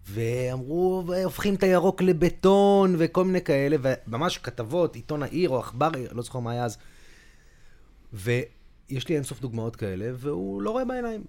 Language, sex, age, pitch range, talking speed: Hebrew, male, 30-49, 110-150 Hz, 150 wpm